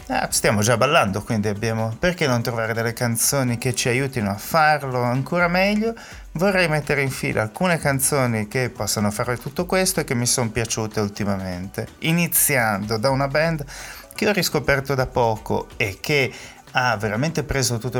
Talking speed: 165 wpm